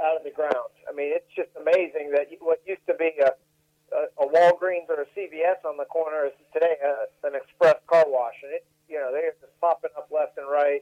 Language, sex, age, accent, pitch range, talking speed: English, male, 50-69, American, 150-195 Hz, 235 wpm